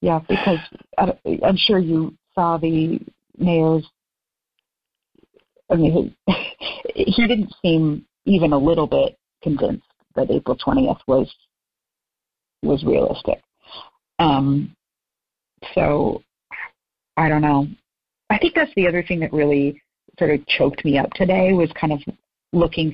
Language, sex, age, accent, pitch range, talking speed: English, female, 40-59, American, 140-175 Hz, 125 wpm